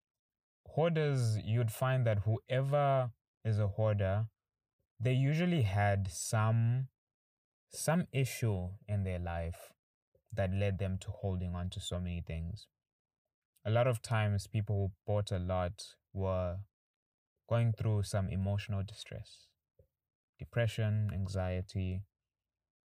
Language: English